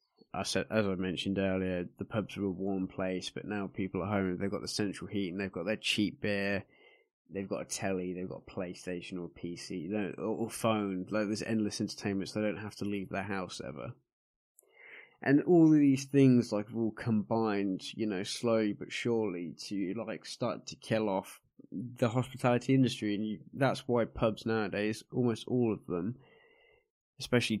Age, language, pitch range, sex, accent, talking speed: 20-39, English, 100-120 Hz, male, British, 190 wpm